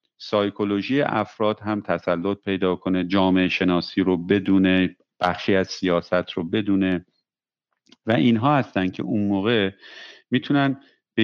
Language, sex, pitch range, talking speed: Persian, male, 95-120 Hz, 125 wpm